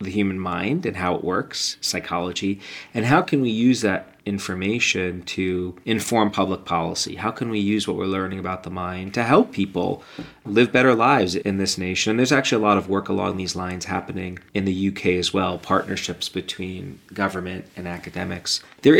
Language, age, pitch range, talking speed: English, 30-49, 95-125 Hz, 190 wpm